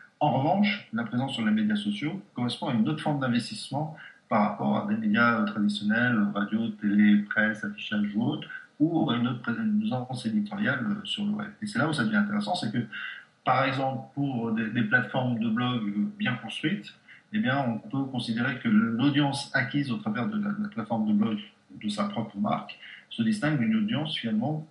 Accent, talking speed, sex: French, 190 wpm, male